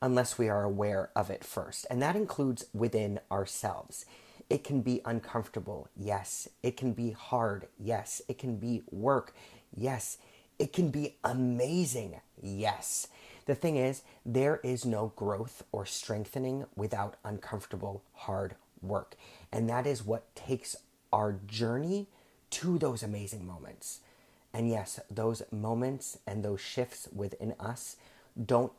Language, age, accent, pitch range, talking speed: English, 30-49, American, 105-130 Hz, 140 wpm